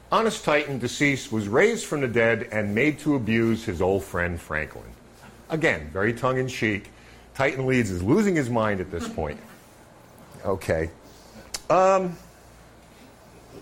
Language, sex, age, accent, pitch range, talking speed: English, male, 50-69, American, 95-130 Hz, 130 wpm